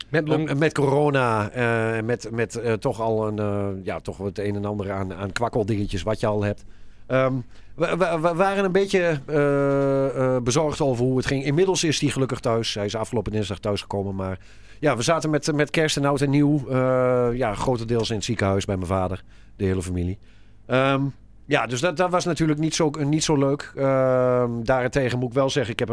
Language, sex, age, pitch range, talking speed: Dutch, male, 40-59, 105-145 Hz, 210 wpm